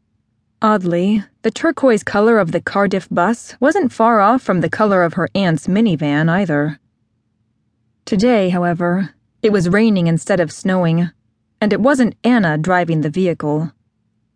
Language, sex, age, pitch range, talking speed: English, female, 20-39, 150-210 Hz, 140 wpm